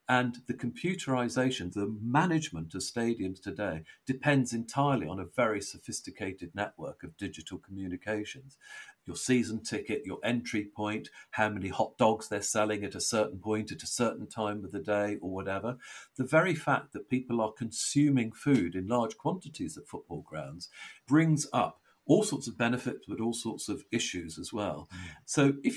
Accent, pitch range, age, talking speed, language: British, 105-140 Hz, 50-69, 170 wpm, English